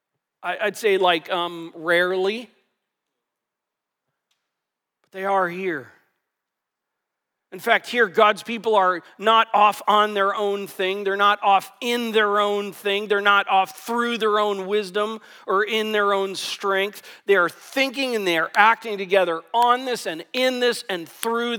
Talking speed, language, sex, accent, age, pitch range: 155 wpm, English, male, American, 40-59, 180-230 Hz